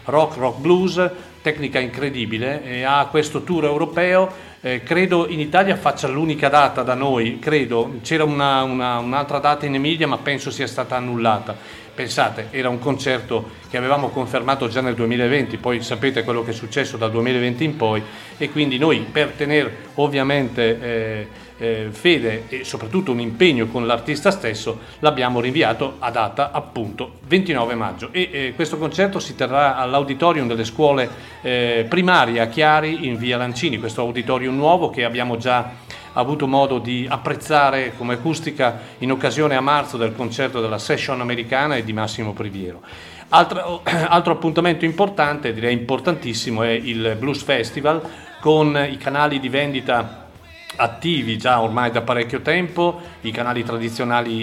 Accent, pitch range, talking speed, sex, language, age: native, 115-150 Hz, 155 wpm, male, Italian, 40-59